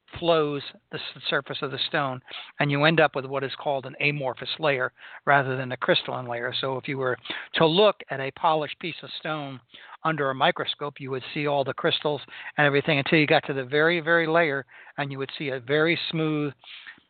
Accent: American